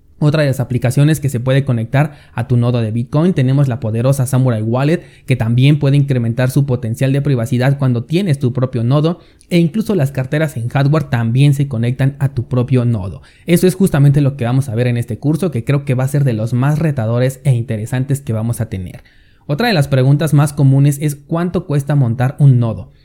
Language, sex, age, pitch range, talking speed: Spanish, male, 30-49, 125-145 Hz, 215 wpm